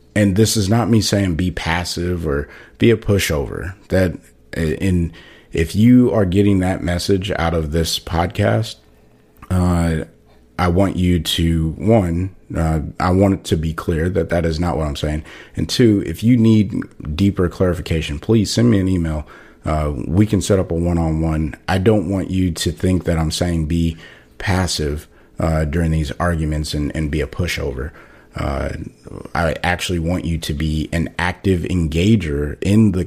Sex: male